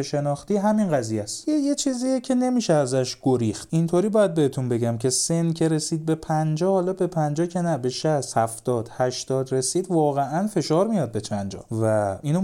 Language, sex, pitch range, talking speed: Persian, male, 115-165 Hz, 185 wpm